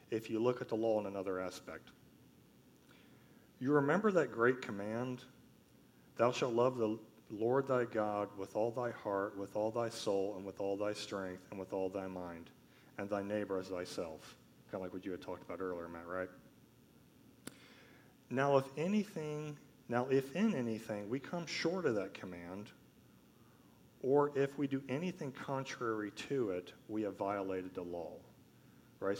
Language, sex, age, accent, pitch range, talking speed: English, male, 40-59, American, 95-125 Hz, 170 wpm